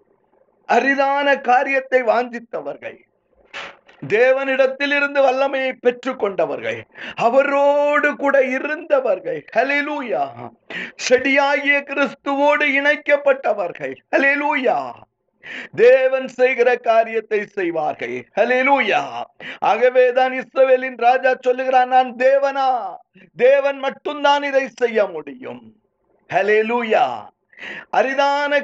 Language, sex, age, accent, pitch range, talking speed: Tamil, male, 50-69, native, 255-290 Hz, 60 wpm